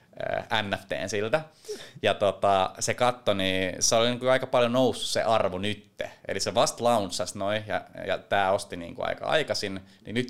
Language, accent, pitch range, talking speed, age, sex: Finnish, native, 95-120 Hz, 175 wpm, 20-39, male